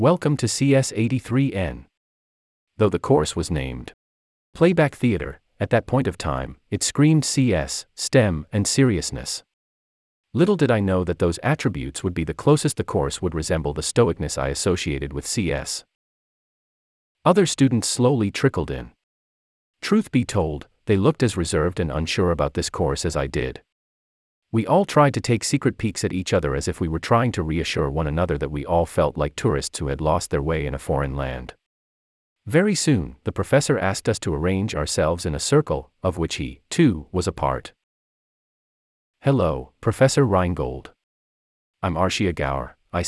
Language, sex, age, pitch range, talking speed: English, male, 40-59, 70-120 Hz, 170 wpm